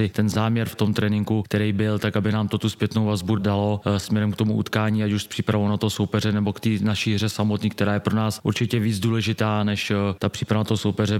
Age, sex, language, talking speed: 30-49, male, Czech, 240 wpm